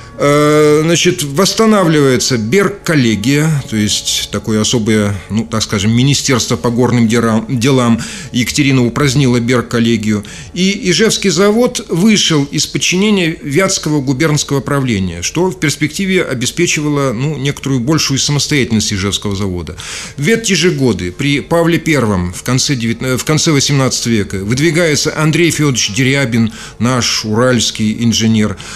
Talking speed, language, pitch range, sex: 125 wpm, Russian, 115-160 Hz, male